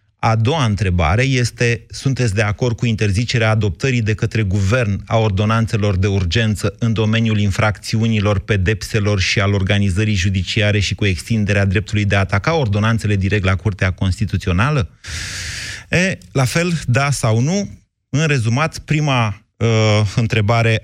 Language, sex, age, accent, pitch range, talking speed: Romanian, male, 30-49, native, 100-120 Hz, 130 wpm